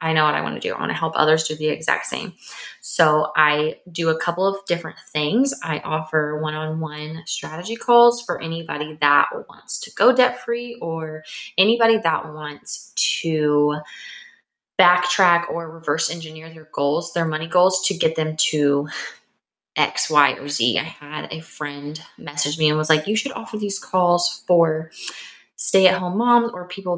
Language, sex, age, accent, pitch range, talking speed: English, female, 20-39, American, 150-175 Hz, 175 wpm